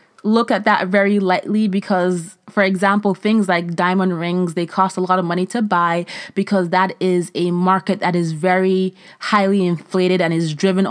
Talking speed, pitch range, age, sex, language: 180 wpm, 170-200 Hz, 20-39, female, English